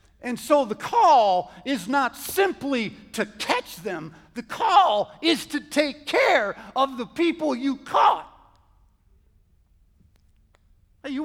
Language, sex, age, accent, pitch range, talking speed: English, male, 50-69, American, 225-335 Hz, 115 wpm